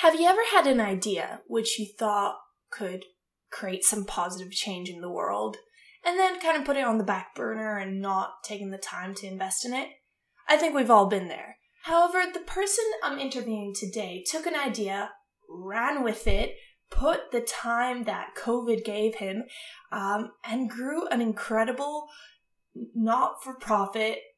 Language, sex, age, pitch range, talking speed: English, female, 10-29, 210-270 Hz, 165 wpm